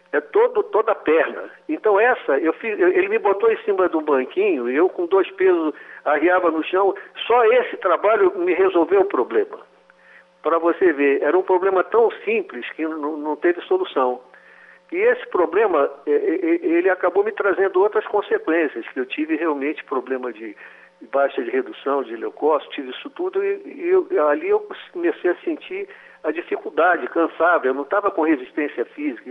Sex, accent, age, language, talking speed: male, Brazilian, 60-79, Portuguese, 170 wpm